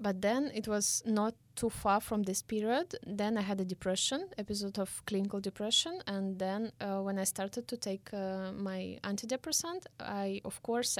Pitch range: 195-235 Hz